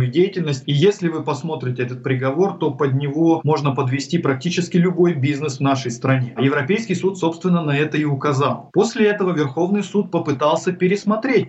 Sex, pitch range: male, 130-170 Hz